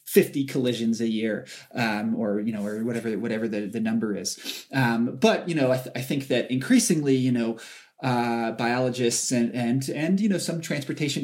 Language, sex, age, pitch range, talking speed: English, male, 20-39, 115-135 Hz, 165 wpm